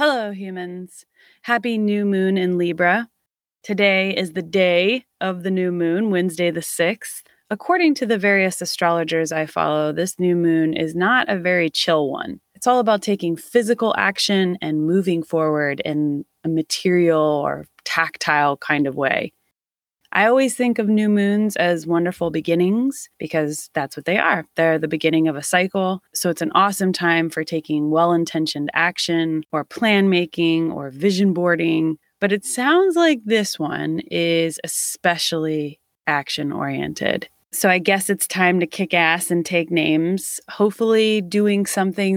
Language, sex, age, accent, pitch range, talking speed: English, female, 20-39, American, 165-205 Hz, 155 wpm